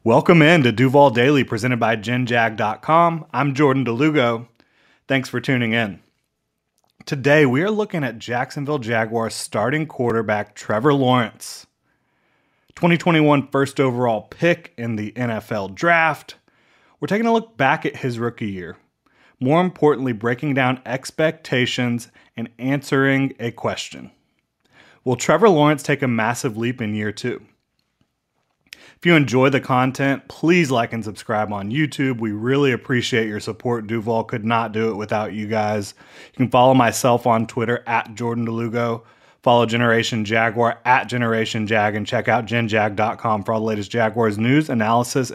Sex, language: male, English